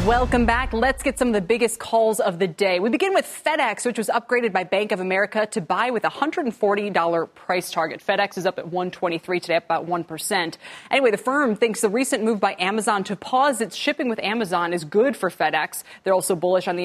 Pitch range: 180-235 Hz